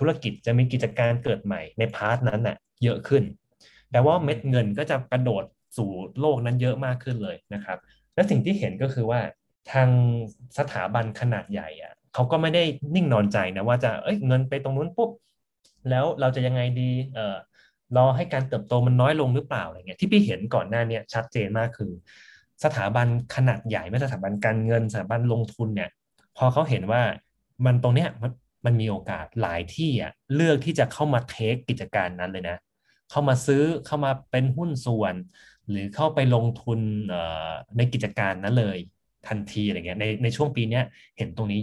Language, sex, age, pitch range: Thai, male, 20-39, 110-130 Hz